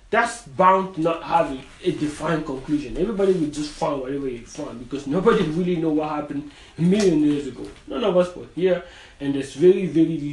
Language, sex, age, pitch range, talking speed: English, male, 30-49, 140-185 Hz, 205 wpm